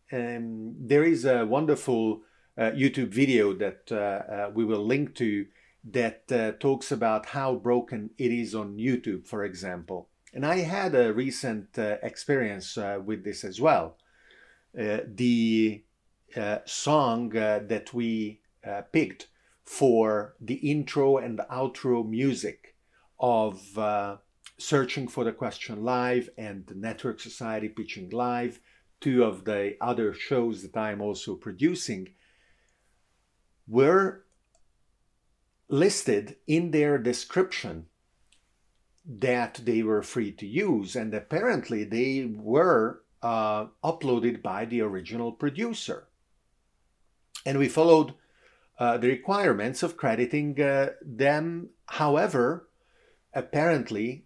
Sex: male